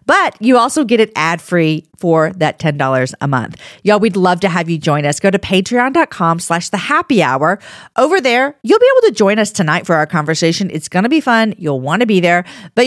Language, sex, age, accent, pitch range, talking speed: English, female, 40-59, American, 155-225 Hz, 220 wpm